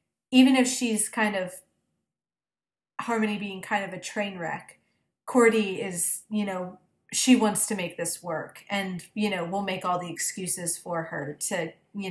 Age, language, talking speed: 30-49, English, 170 wpm